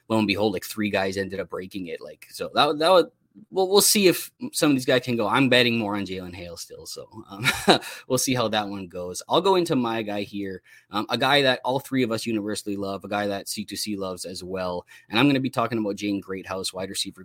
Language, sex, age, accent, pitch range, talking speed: English, male, 20-39, American, 100-135 Hz, 260 wpm